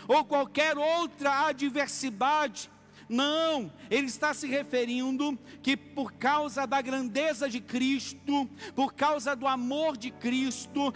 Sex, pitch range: male, 270-295 Hz